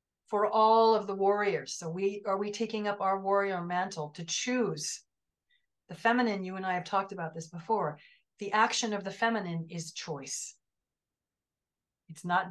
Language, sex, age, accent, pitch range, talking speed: English, female, 40-59, American, 165-205 Hz, 170 wpm